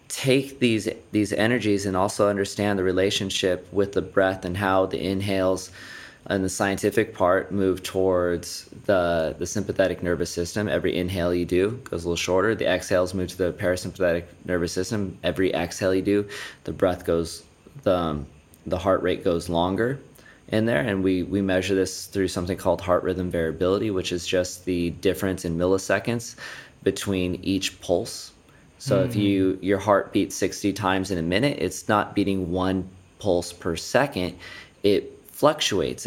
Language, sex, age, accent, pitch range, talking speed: English, male, 20-39, American, 90-100 Hz, 165 wpm